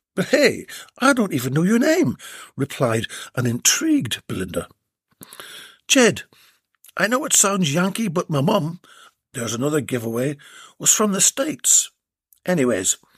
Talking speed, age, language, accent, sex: 130 wpm, 60-79, English, British, male